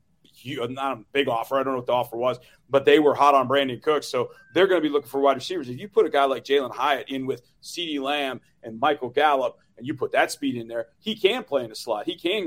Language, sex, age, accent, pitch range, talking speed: English, male, 40-59, American, 135-175 Hz, 280 wpm